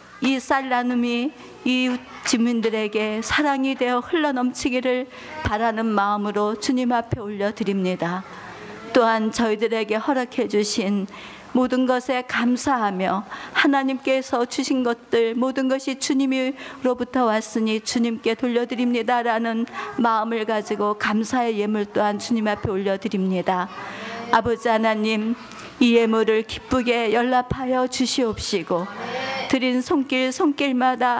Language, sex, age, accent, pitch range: Korean, female, 50-69, native, 220-255 Hz